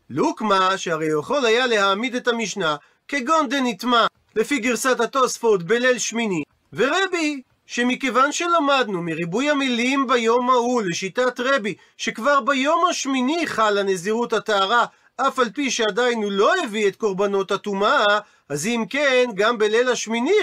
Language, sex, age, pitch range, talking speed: Hebrew, male, 40-59, 205-275 Hz, 130 wpm